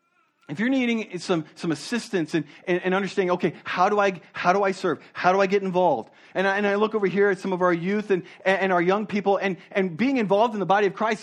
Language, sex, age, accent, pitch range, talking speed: English, male, 50-69, American, 155-200 Hz, 250 wpm